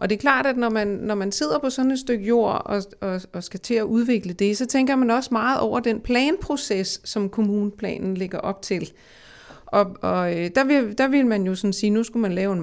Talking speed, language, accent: 245 wpm, Danish, native